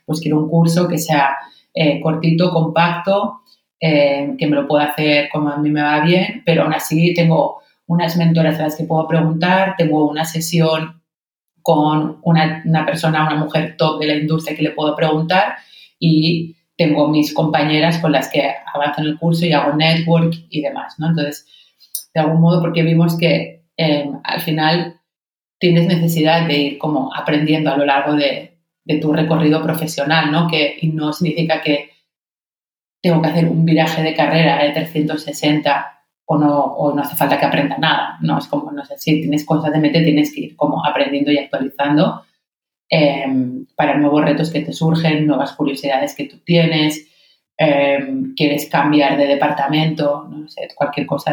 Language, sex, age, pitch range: Spanish, female, 30-49, 145-165 Hz